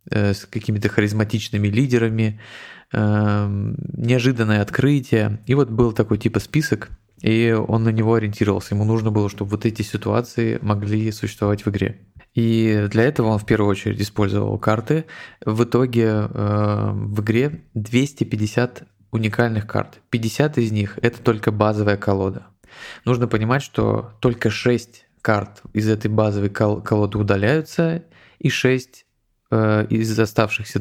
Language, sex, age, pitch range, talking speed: Russian, male, 20-39, 105-120 Hz, 130 wpm